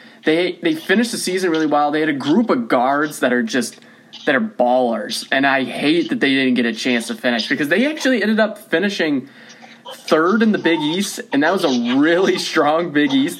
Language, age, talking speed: English, 20-39, 220 wpm